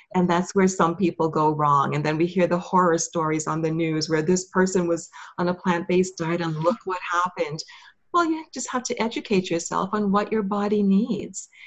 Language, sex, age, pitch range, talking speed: English, female, 40-59, 165-205 Hz, 210 wpm